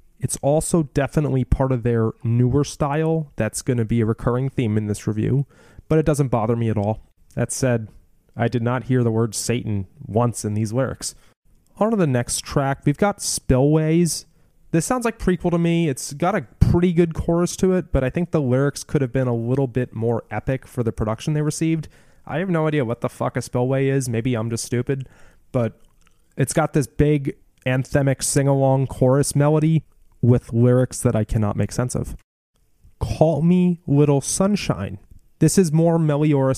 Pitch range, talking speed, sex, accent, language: 120-155 Hz, 190 wpm, male, American, English